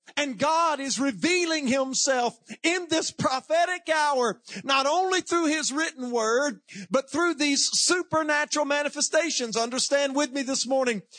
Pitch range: 240-295 Hz